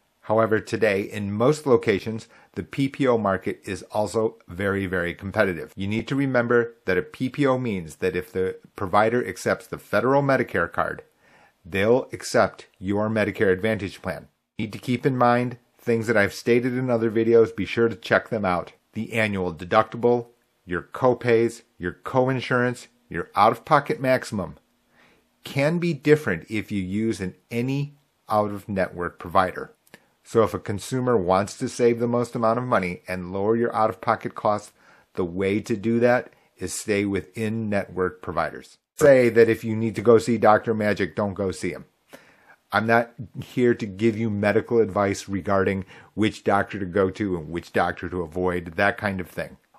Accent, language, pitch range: American, English, 100-120 Hz